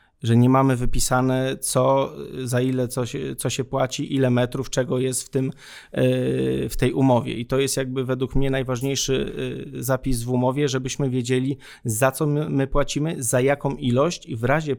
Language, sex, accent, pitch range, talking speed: Polish, male, native, 125-140 Hz, 175 wpm